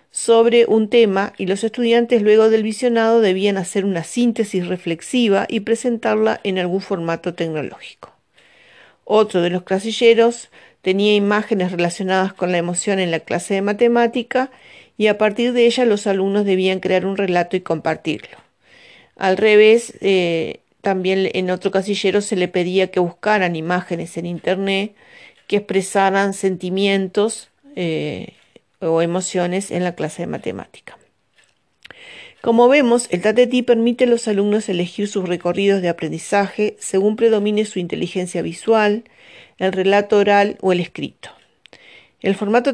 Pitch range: 185-220 Hz